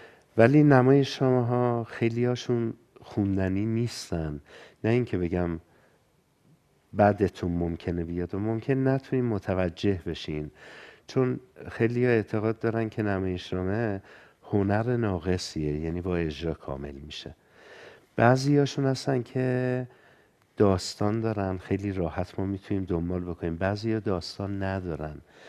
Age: 50-69